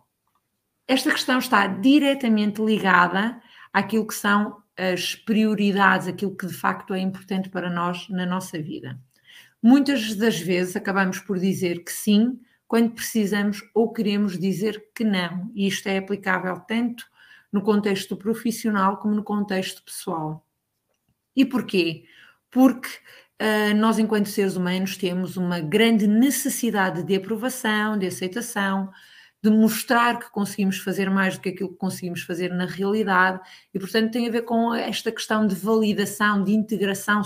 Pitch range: 185-220 Hz